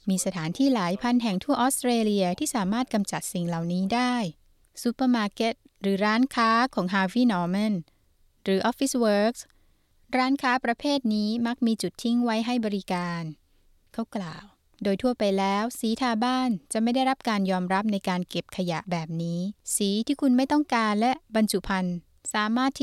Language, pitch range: Thai, 185-240 Hz